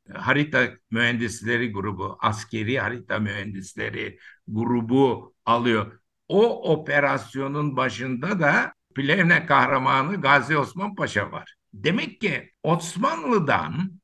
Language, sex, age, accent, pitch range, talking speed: Turkish, male, 60-79, native, 130-180 Hz, 90 wpm